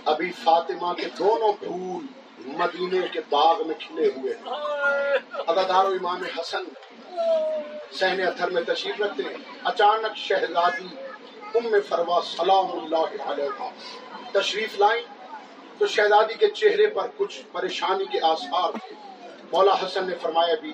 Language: Urdu